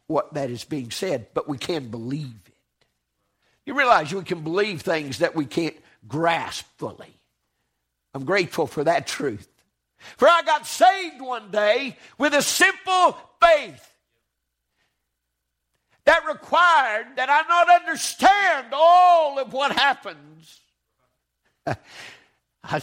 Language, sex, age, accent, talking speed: English, male, 60-79, American, 125 wpm